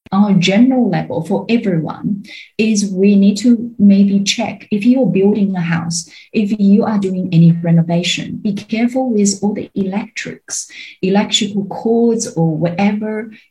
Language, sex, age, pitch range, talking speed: English, female, 30-49, 175-215 Hz, 140 wpm